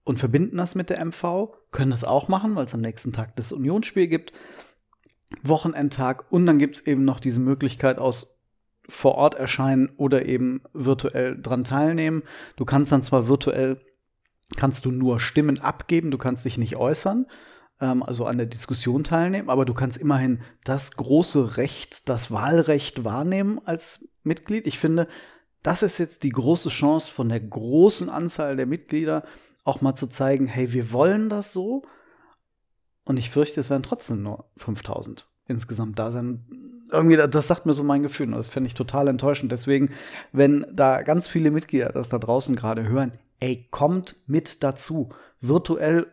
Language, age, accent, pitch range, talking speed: German, 40-59, German, 130-160 Hz, 170 wpm